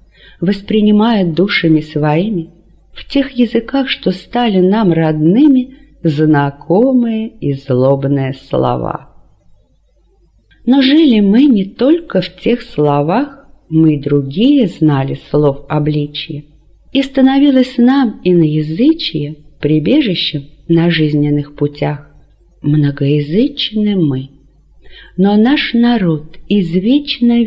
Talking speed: 90 wpm